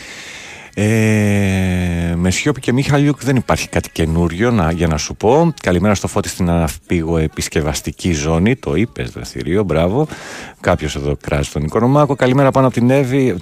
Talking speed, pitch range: 155 wpm, 85-120 Hz